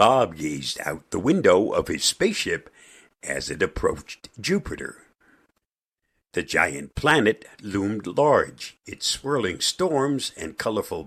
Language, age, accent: English, 60-79, American